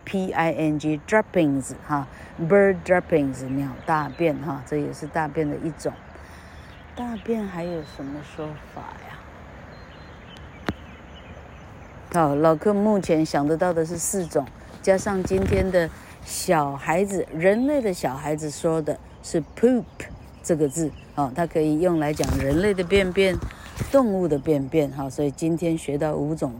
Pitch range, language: 150-210 Hz, Chinese